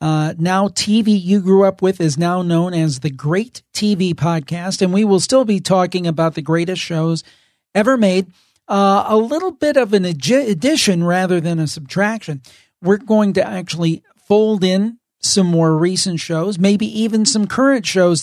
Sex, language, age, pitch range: male, English, 40-59, 165-200 Hz